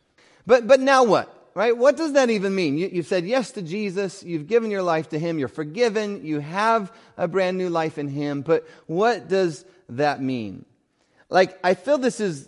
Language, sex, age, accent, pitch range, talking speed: English, male, 30-49, American, 150-200 Hz, 195 wpm